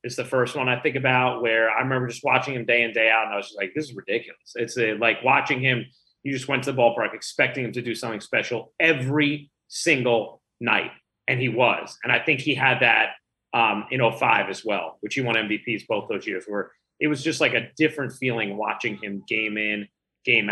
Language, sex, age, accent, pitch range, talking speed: English, male, 30-49, American, 125-160 Hz, 230 wpm